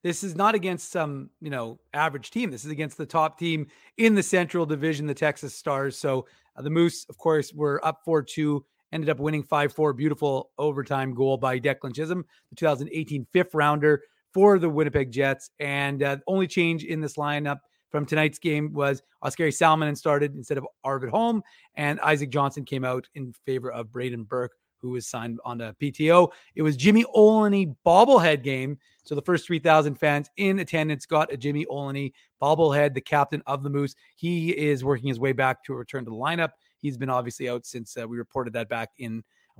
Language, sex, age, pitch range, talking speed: English, male, 30-49, 135-160 Hz, 195 wpm